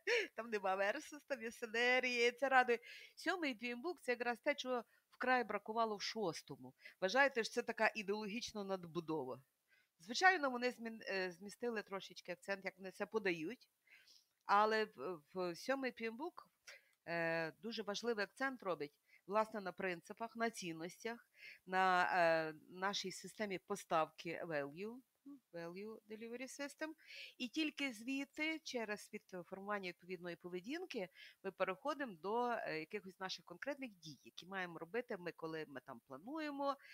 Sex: female